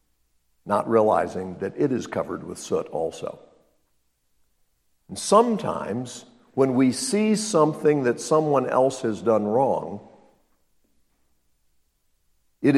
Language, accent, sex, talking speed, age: English, American, male, 105 wpm, 60-79